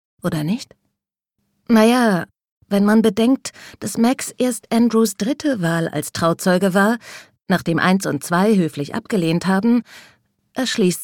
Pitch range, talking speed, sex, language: 180-235 Hz, 125 wpm, female, German